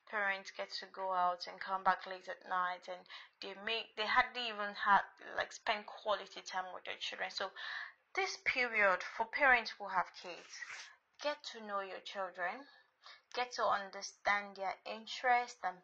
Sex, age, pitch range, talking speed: female, 20-39, 185-235 Hz, 165 wpm